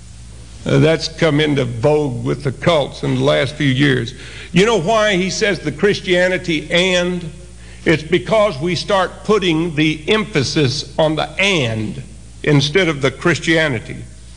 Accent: American